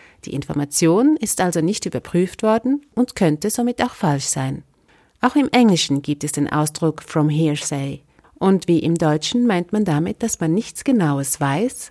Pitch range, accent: 155-240 Hz, German